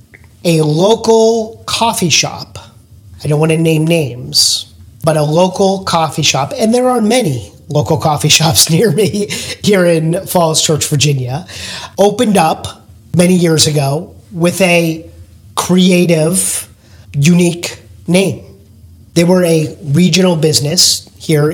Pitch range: 140-175 Hz